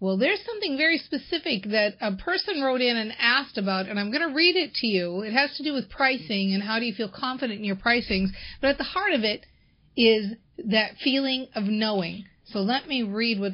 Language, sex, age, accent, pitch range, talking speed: English, female, 40-59, American, 200-260 Hz, 230 wpm